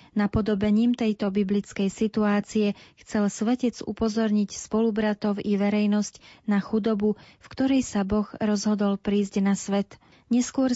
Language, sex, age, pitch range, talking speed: Slovak, female, 30-49, 205-215 Hz, 125 wpm